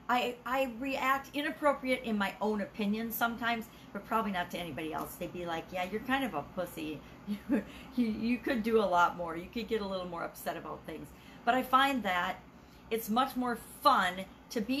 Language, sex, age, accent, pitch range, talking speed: English, female, 50-69, American, 185-240 Hz, 205 wpm